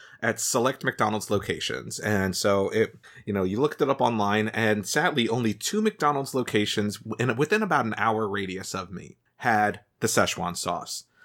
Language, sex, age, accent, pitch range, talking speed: English, male, 30-49, American, 105-130 Hz, 165 wpm